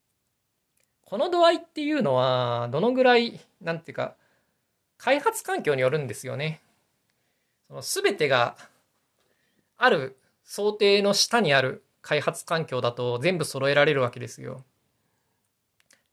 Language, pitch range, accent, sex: Japanese, 125-200 Hz, native, male